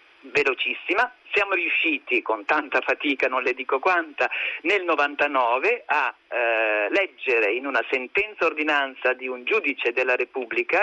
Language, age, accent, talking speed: Italian, 40-59, native, 135 wpm